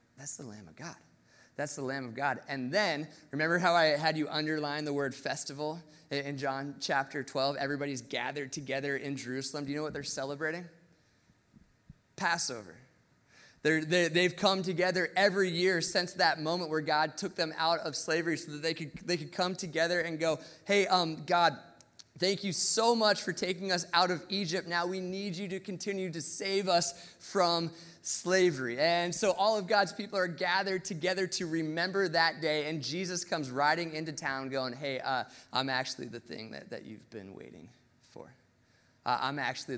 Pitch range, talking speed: 120-175 Hz, 180 wpm